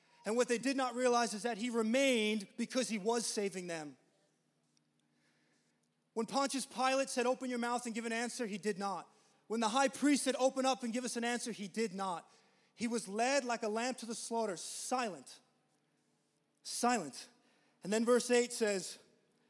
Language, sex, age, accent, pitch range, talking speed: English, male, 20-39, American, 205-245 Hz, 185 wpm